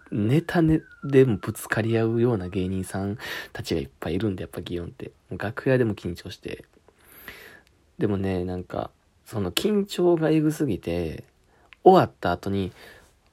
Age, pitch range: 20-39, 90-135 Hz